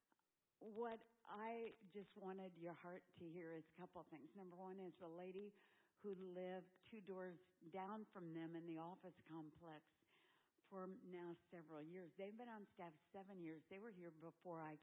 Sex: female